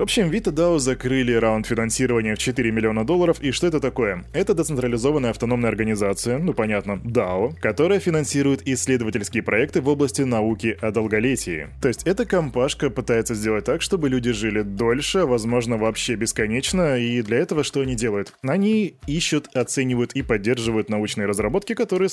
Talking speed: 160 wpm